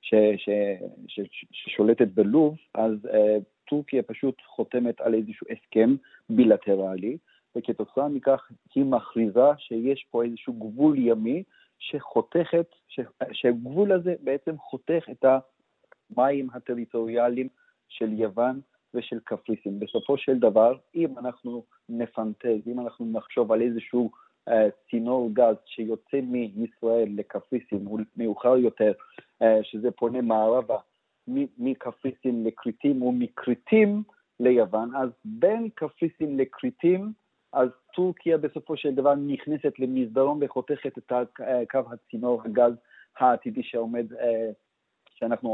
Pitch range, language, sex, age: 115-145 Hz, Hebrew, male, 40-59